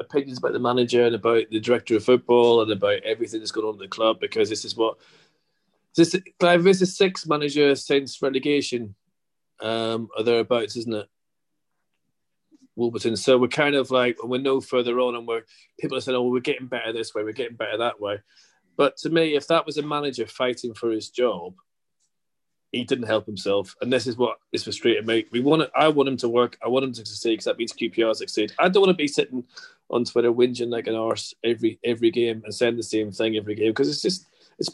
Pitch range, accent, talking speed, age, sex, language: 120-170 Hz, British, 220 wpm, 30-49, male, English